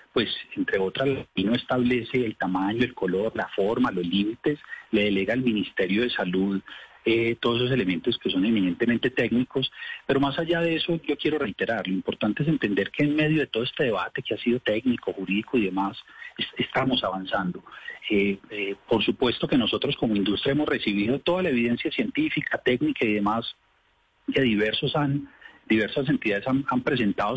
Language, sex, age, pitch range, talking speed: Spanish, male, 40-59, 105-150 Hz, 180 wpm